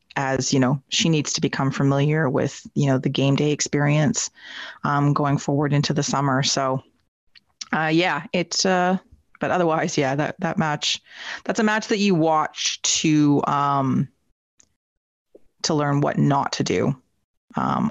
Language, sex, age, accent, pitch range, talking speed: English, female, 30-49, American, 140-170 Hz, 155 wpm